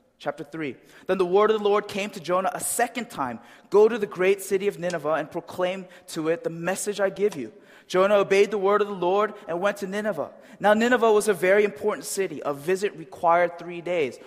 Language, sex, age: Korean, male, 20-39